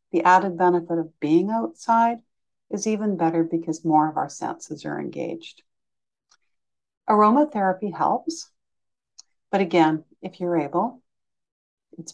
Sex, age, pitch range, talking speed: female, 60-79, 165-200 Hz, 120 wpm